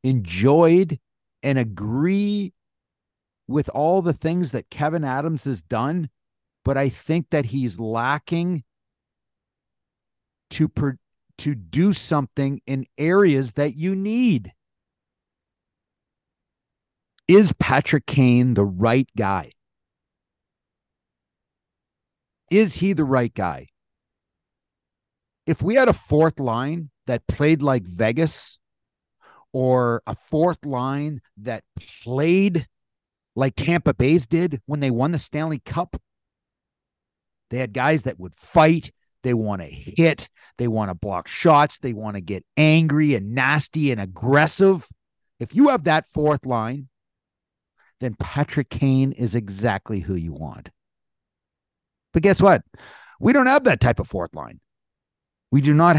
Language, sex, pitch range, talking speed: English, male, 105-155 Hz, 125 wpm